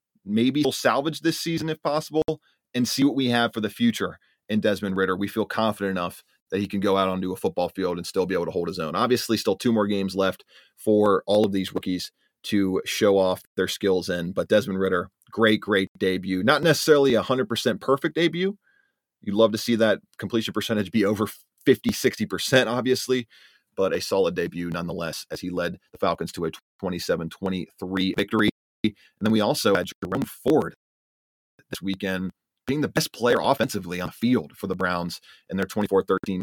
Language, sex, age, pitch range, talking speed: English, male, 30-49, 95-115 Hz, 195 wpm